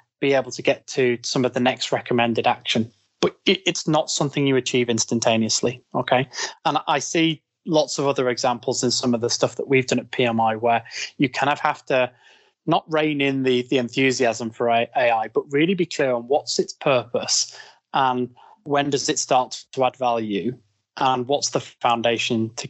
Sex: male